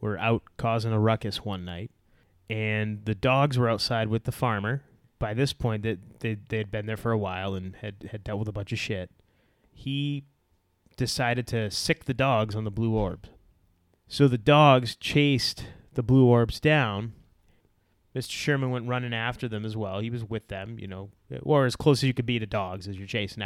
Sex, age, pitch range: male, 30-49, 100-120 Hz